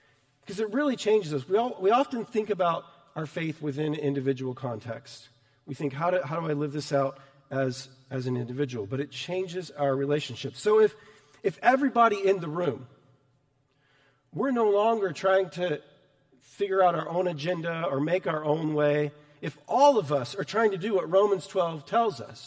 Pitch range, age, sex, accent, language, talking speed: 140-210 Hz, 40-59, male, American, English, 185 wpm